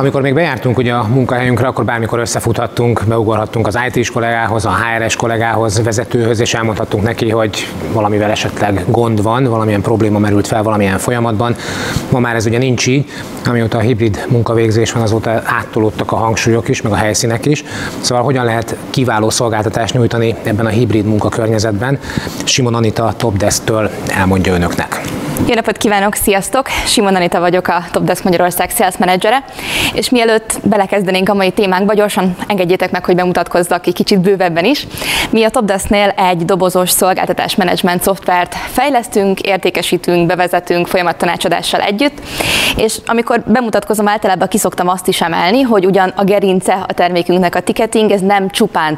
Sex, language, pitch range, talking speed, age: male, Hungarian, 115-190 Hz, 150 wpm, 20-39